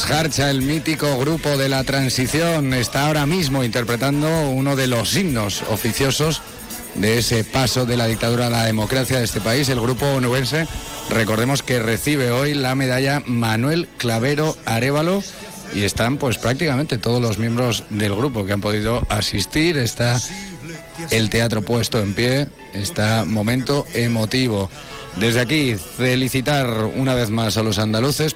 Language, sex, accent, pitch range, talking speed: Spanish, male, Spanish, 115-140 Hz, 150 wpm